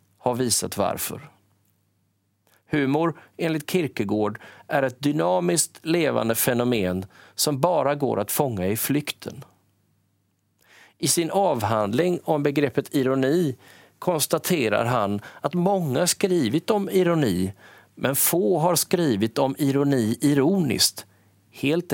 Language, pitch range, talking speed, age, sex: Swedish, 105-165 Hz, 105 wpm, 40-59, male